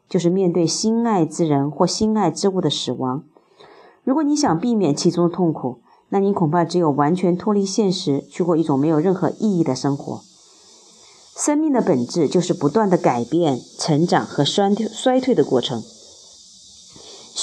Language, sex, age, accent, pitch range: Chinese, female, 30-49, native, 155-205 Hz